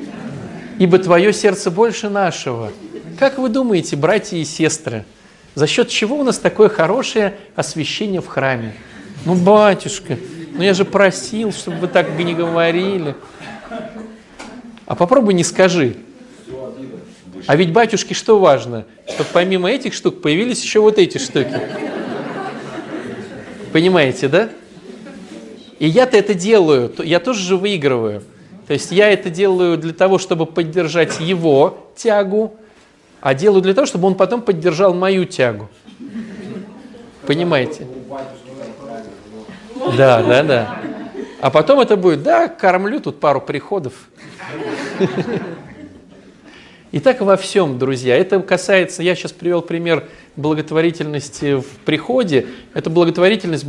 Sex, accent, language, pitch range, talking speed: male, native, Russian, 155-210 Hz, 125 wpm